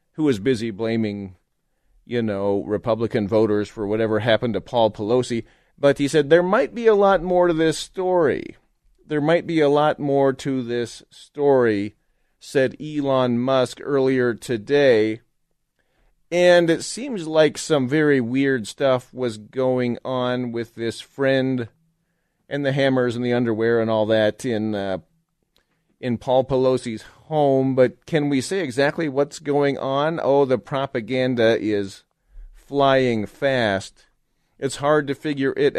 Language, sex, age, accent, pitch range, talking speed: English, male, 40-59, American, 120-145 Hz, 150 wpm